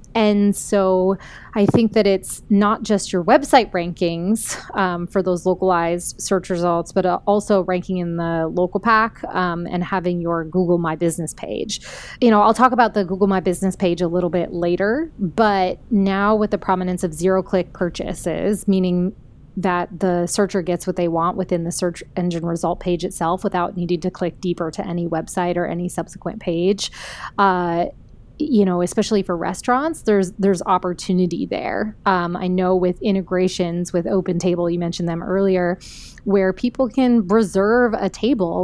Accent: American